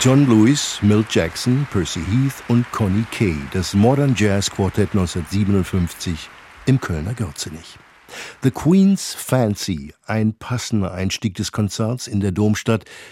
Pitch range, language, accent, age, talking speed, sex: 95-120 Hz, German, German, 50-69, 130 wpm, male